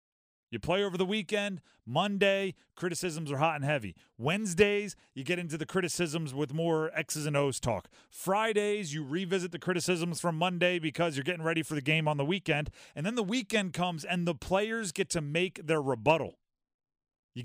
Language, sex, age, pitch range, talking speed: English, male, 30-49, 150-195 Hz, 185 wpm